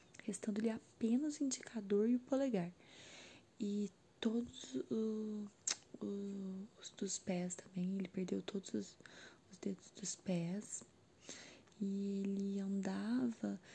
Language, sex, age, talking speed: Amharic, female, 20-39, 120 wpm